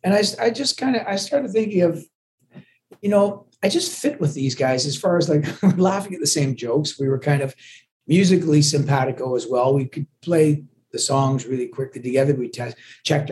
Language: English